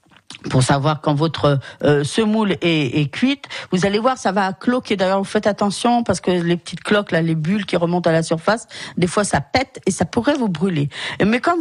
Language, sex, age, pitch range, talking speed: French, female, 50-69, 155-215 Hz, 225 wpm